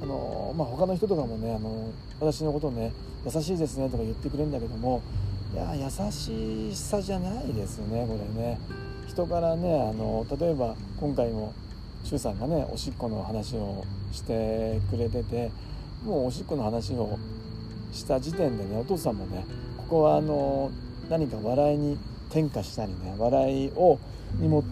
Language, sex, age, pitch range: Japanese, male, 40-59, 105-140 Hz